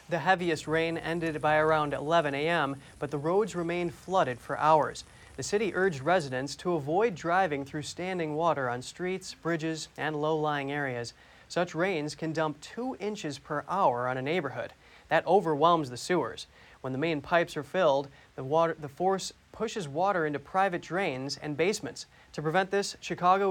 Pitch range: 145-180 Hz